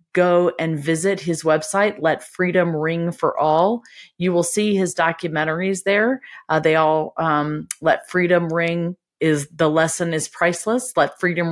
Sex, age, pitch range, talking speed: female, 40-59, 155-200 Hz, 155 wpm